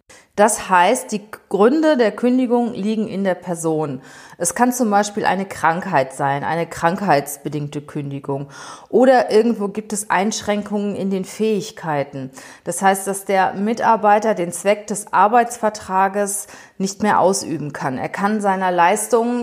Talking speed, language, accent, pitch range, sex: 140 wpm, German, German, 180-220 Hz, female